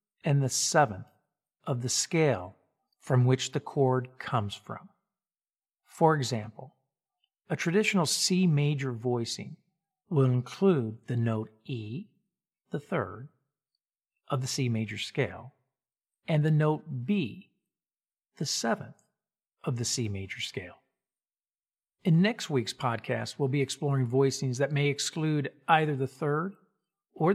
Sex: male